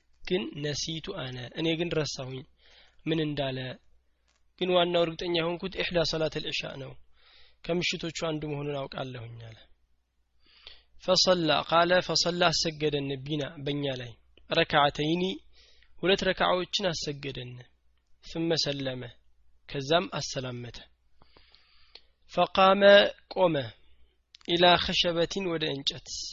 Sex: male